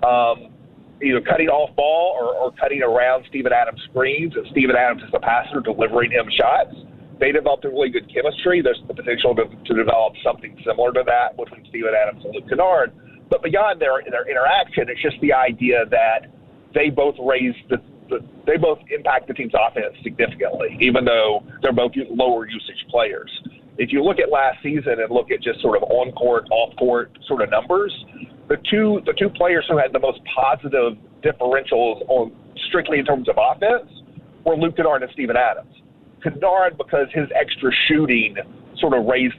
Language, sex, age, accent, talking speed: English, male, 40-59, American, 185 wpm